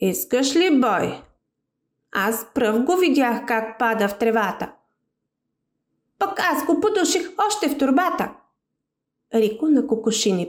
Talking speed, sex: 120 wpm, female